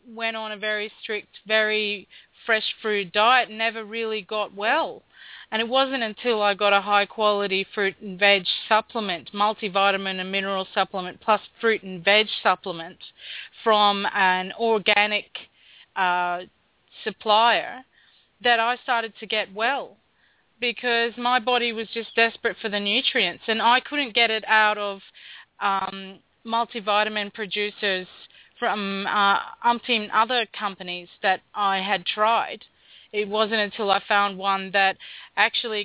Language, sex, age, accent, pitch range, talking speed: English, female, 30-49, Australian, 200-225 Hz, 135 wpm